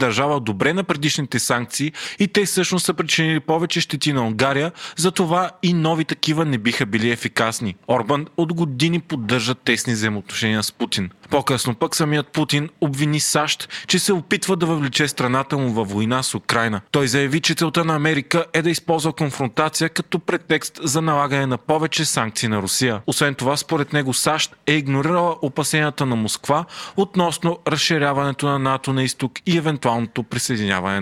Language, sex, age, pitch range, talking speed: Bulgarian, male, 30-49, 125-160 Hz, 165 wpm